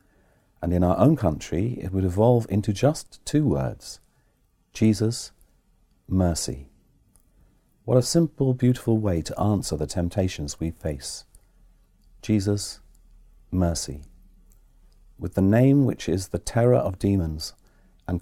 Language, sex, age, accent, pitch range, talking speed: English, male, 40-59, British, 85-115 Hz, 120 wpm